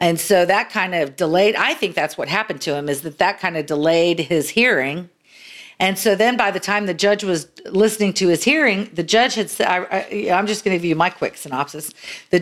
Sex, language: female, English